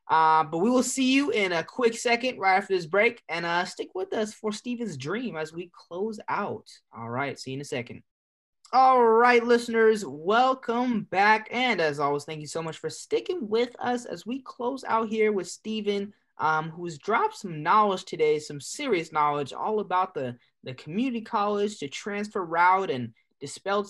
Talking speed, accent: 190 wpm, American